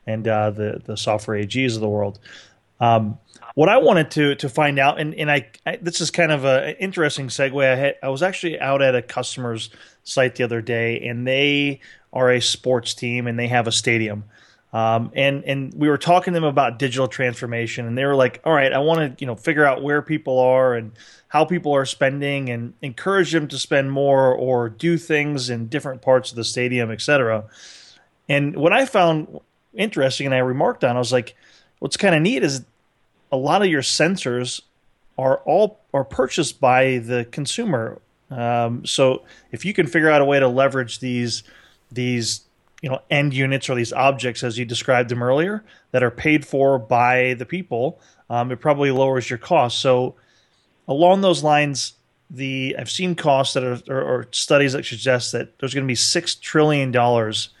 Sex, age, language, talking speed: male, 20-39, English, 200 wpm